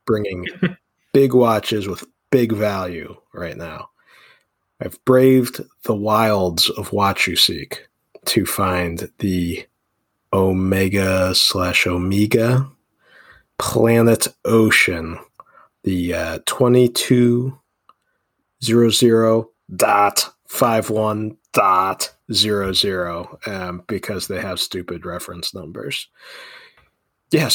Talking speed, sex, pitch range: 85 wpm, male, 95-125 Hz